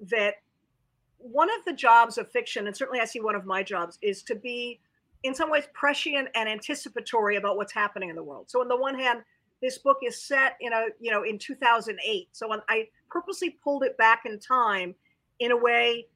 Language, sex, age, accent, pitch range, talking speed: English, female, 50-69, American, 205-255 Hz, 210 wpm